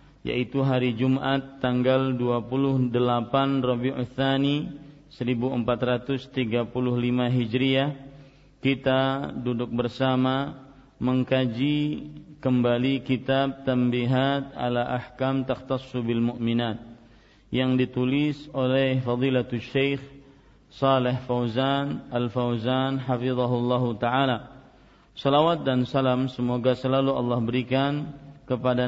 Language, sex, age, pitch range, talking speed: Malay, male, 40-59, 125-135 Hz, 85 wpm